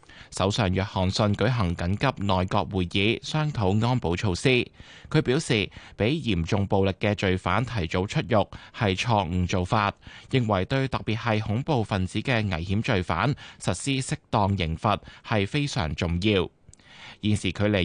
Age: 20-39